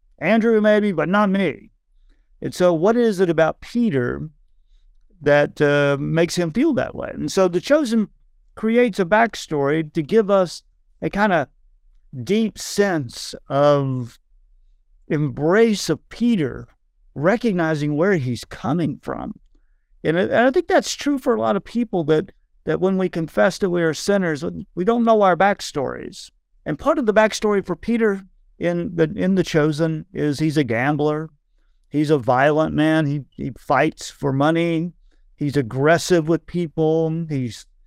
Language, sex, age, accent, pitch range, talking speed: English, male, 50-69, American, 145-195 Hz, 155 wpm